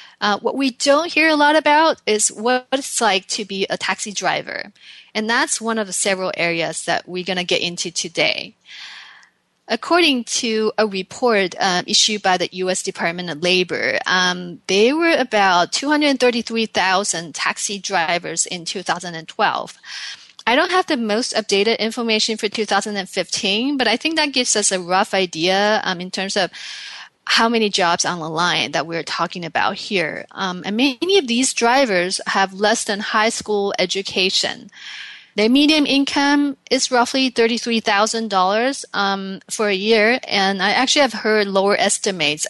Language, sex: English, female